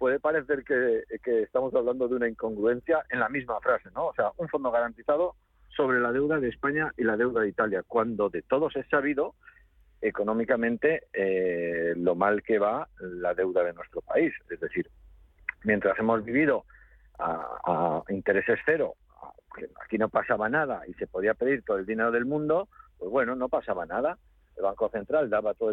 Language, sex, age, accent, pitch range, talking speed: Spanish, male, 50-69, Spanish, 115-165 Hz, 175 wpm